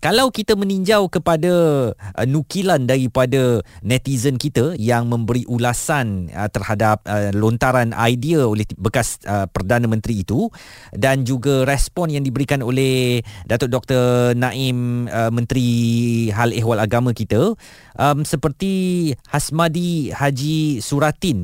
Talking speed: 120 wpm